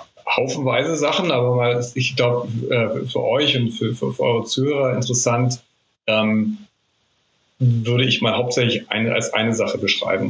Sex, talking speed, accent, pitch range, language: male, 145 wpm, German, 115-130 Hz, German